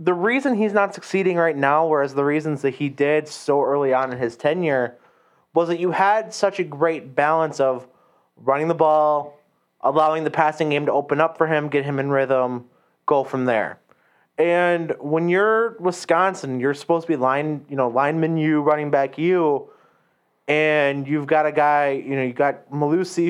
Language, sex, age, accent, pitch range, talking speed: English, male, 20-39, American, 135-170 Hz, 190 wpm